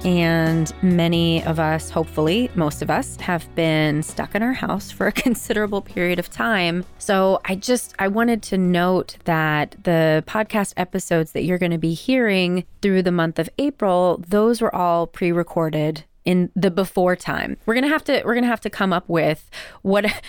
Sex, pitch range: female, 160-200 Hz